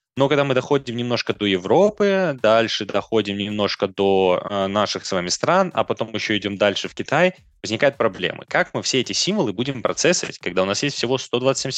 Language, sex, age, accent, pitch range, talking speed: Russian, male, 20-39, native, 105-135 Hz, 190 wpm